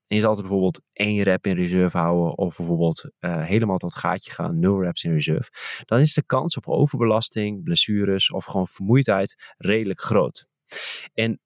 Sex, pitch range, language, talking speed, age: male, 90-115 Hz, Dutch, 180 wpm, 20-39